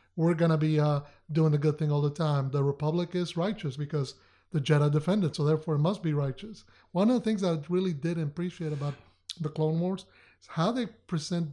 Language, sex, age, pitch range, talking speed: English, male, 30-49, 150-180 Hz, 225 wpm